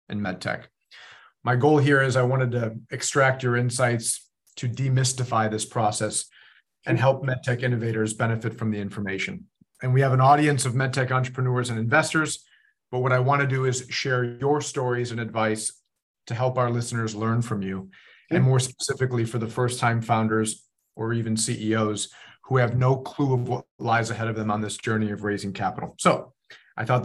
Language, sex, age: English, male, 40-59